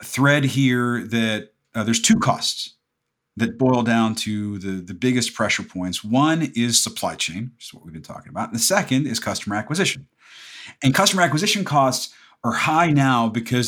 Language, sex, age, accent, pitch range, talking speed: English, male, 50-69, American, 105-135 Hz, 180 wpm